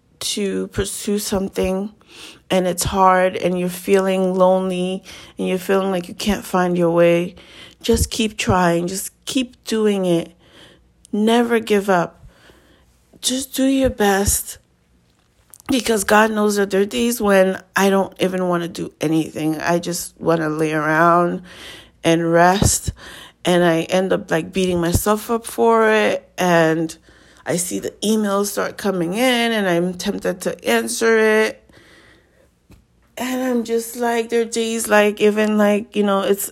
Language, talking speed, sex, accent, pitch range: English, 155 wpm, female, American, 170-210 Hz